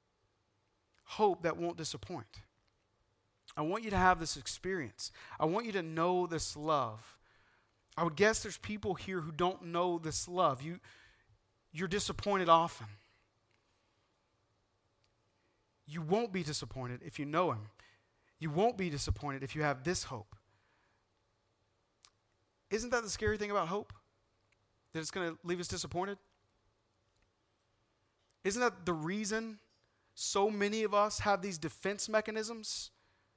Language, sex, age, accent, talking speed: English, male, 40-59, American, 135 wpm